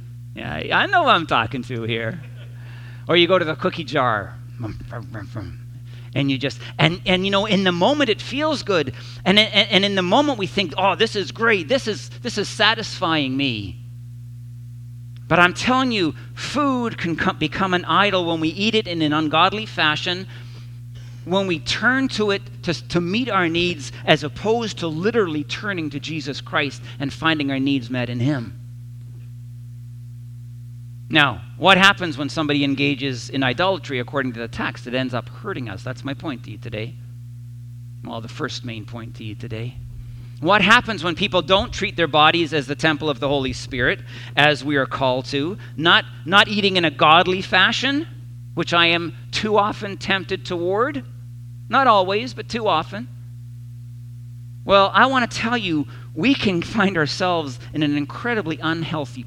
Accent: American